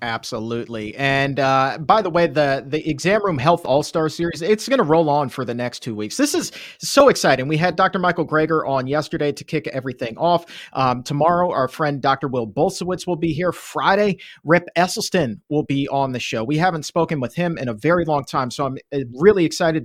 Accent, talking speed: American, 215 wpm